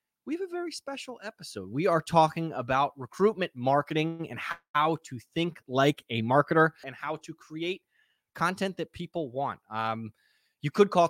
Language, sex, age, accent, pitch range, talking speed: English, male, 20-39, American, 115-155 Hz, 170 wpm